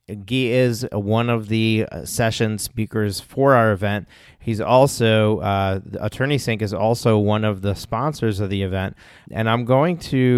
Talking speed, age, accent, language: 160 wpm, 30-49, American, English